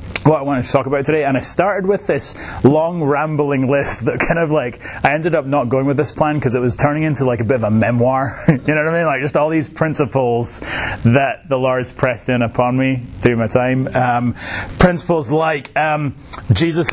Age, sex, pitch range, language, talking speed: 30-49, male, 115-145 Hz, English, 225 wpm